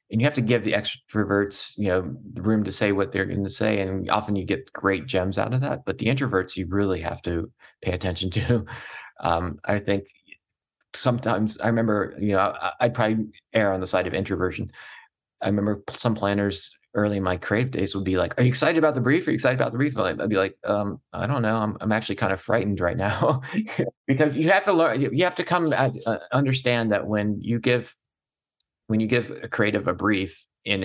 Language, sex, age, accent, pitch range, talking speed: English, male, 30-49, American, 95-115 Hz, 220 wpm